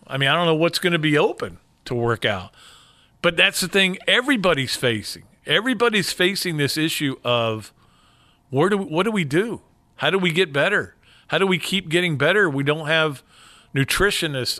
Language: English